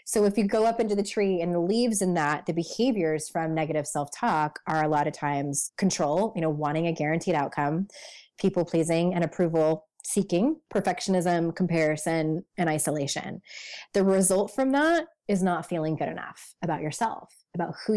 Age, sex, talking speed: 20-39, female, 175 wpm